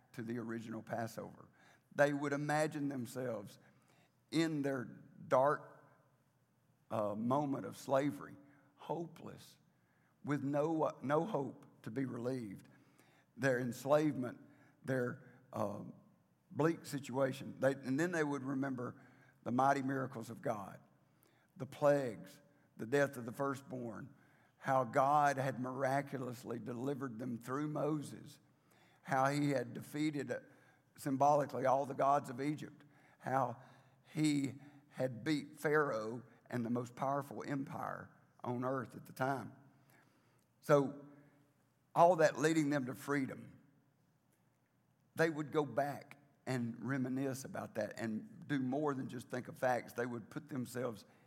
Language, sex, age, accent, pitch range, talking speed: English, male, 50-69, American, 125-145 Hz, 125 wpm